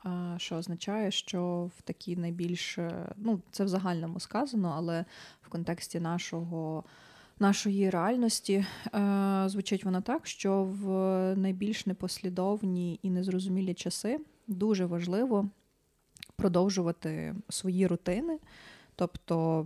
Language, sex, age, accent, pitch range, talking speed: Ukrainian, female, 20-39, native, 180-205 Hz, 105 wpm